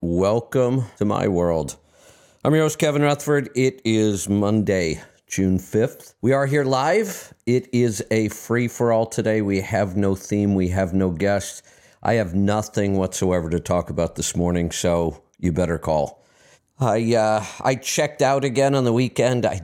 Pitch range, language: 90-115 Hz, English